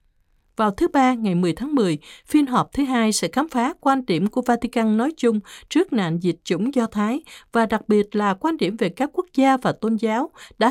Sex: female